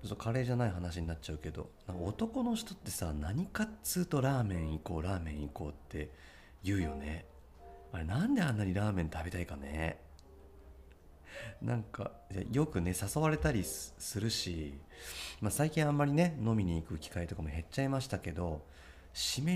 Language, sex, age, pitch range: Japanese, male, 40-59, 75-115 Hz